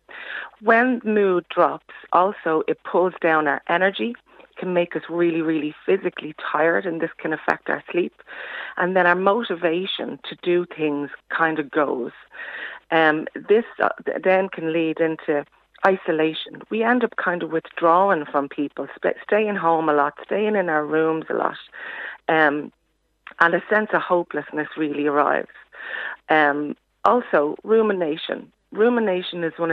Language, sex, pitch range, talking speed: English, female, 155-185 Hz, 145 wpm